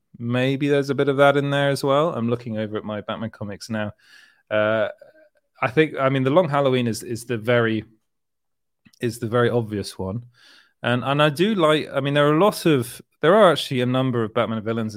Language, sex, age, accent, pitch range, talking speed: English, male, 30-49, British, 110-140 Hz, 220 wpm